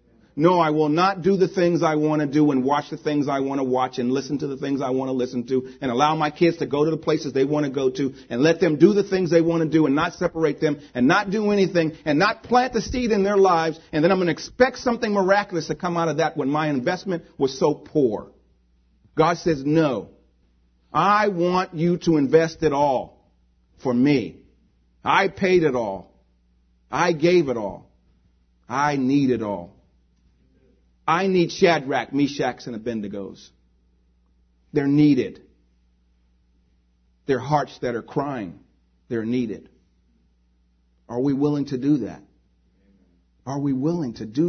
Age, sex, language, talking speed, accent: 40-59, male, English, 185 wpm, American